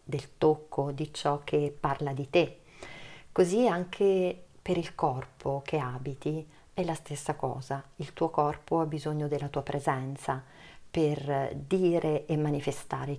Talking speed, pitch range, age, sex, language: 140 wpm, 140-165 Hz, 40-59, female, Italian